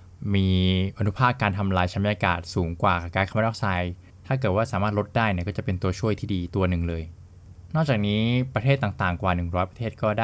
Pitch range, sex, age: 90-105 Hz, male, 20-39